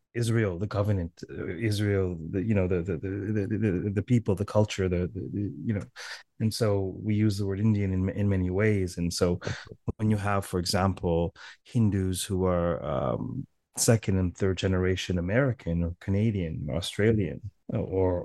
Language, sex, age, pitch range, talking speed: English, male, 30-49, 95-115 Hz, 170 wpm